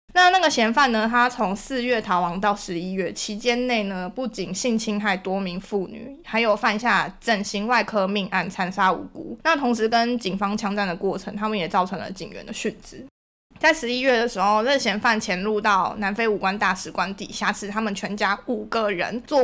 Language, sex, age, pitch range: Chinese, female, 20-39, 195-240 Hz